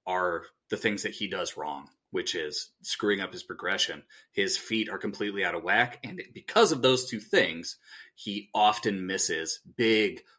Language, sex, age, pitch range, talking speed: English, male, 30-49, 110-145 Hz, 175 wpm